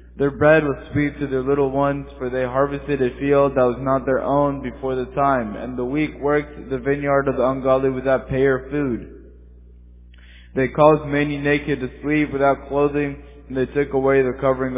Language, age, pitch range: English, 20-39, 125-140 Hz